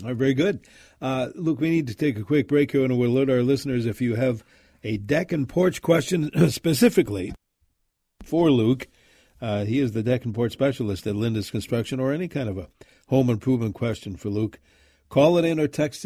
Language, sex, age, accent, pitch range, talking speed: English, male, 50-69, American, 105-135 Hz, 210 wpm